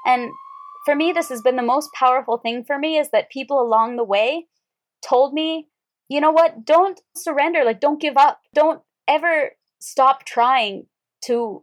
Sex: female